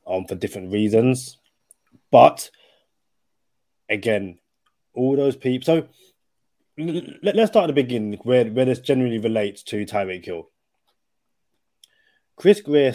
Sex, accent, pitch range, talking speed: male, British, 100-130 Hz, 125 wpm